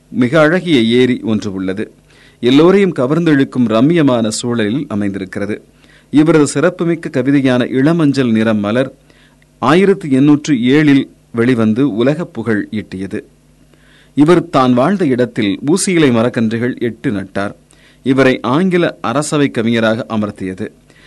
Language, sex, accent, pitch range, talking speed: Tamil, male, native, 105-140 Hz, 105 wpm